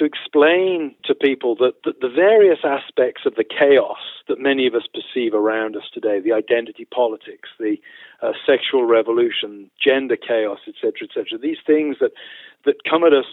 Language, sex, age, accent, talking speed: English, male, 50-69, British, 165 wpm